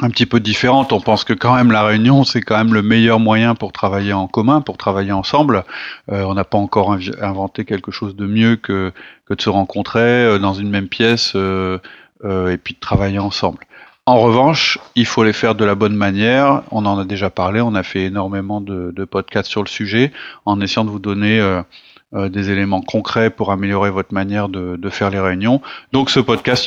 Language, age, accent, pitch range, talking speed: French, 30-49, French, 100-115 Hz, 215 wpm